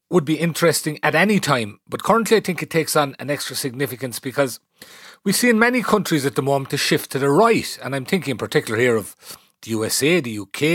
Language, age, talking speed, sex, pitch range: English, 40-59, 230 wpm, male, 130-175 Hz